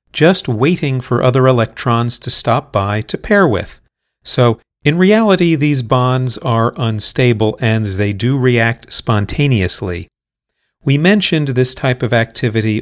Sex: male